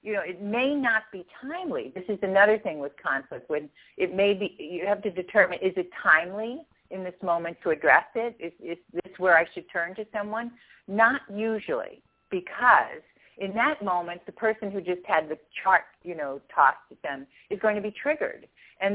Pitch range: 155-215 Hz